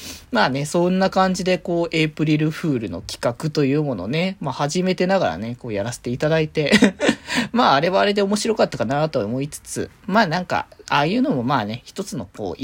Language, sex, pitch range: Japanese, male, 130-185 Hz